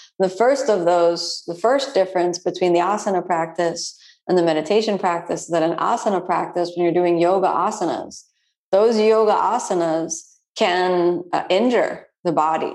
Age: 40-59